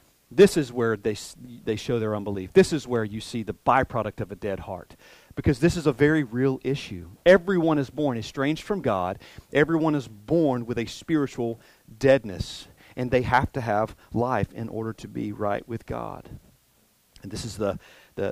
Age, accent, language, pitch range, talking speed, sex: 40-59, American, English, 105-140 Hz, 185 wpm, male